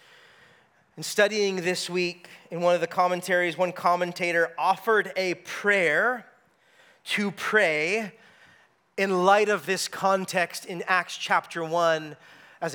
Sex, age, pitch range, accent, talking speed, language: male, 30-49, 185-240 Hz, American, 120 wpm, English